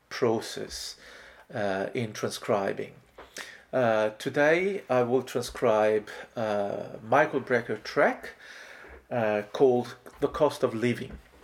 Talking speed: 100 wpm